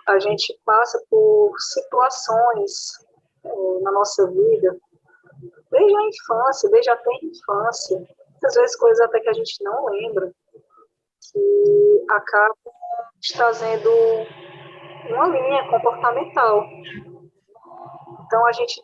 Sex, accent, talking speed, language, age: female, Brazilian, 110 wpm, Portuguese, 20-39